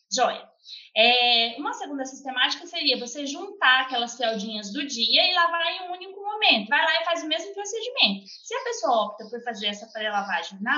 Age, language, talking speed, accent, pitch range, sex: 20-39, Portuguese, 185 wpm, Brazilian, 240-335 Hz, female